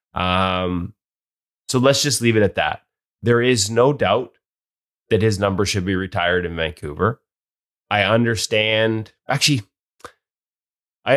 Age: 20-39